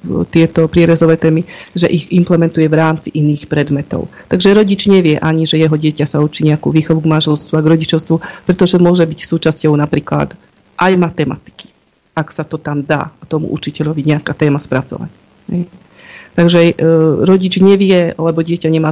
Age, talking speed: 40-59, 155 wpm